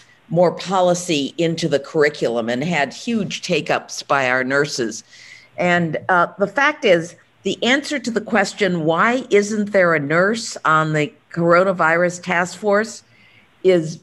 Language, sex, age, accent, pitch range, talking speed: English, female, 50-69, American, 150-195 Hz, 140 wpm